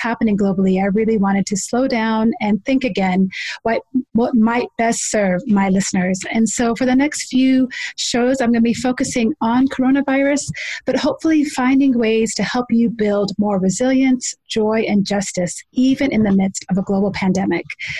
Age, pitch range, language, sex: 30-49, 205-255 Hz, English, female